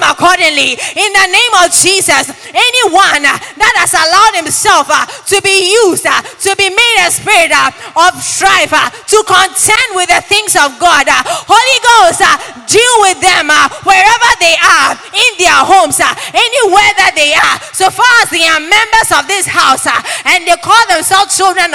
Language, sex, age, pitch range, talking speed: English, female, 20-39, 340-410 Hz, 185 wpm